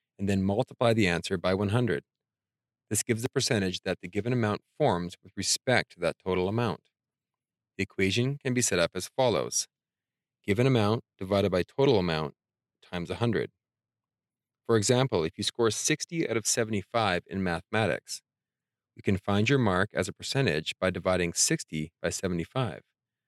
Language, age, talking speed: English, 30-49, 160 wpm